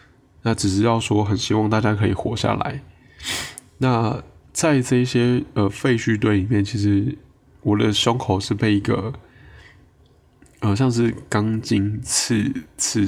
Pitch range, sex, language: 100-120 Hz, male, Chinese